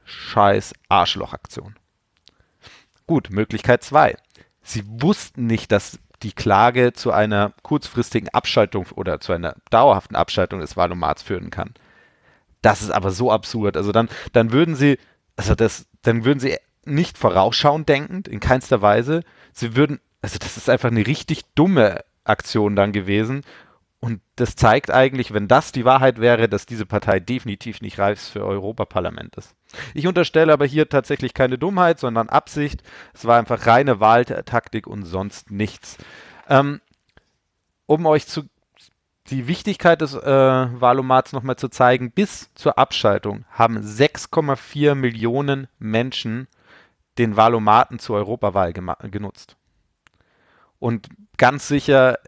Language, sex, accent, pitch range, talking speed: German, male, German, 105-135 Hz, 140 wpm